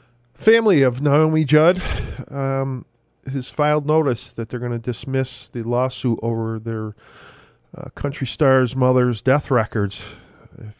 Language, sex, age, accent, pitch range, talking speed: English, male, 40-59, American, 110-130 Hz, 135 wpm